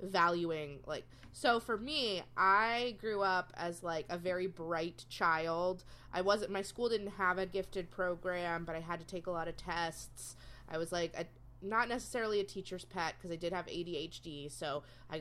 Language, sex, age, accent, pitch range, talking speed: English, female, 20-39, American, 135-185 Hz, 185 wpm